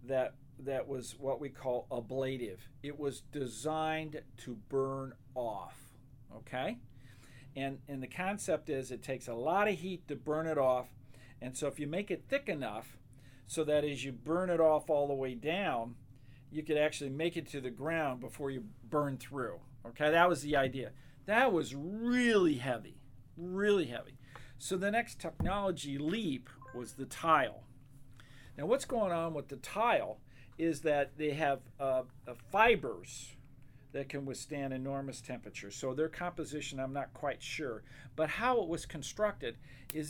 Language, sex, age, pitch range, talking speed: English, male, 50-69, 125-155 Hz, 165 wpm